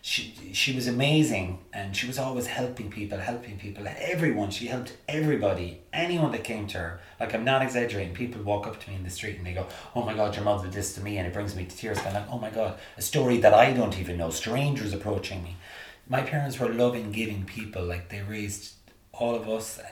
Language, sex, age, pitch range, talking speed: English, male, 30-49, 95-120 Hz, 235 wpm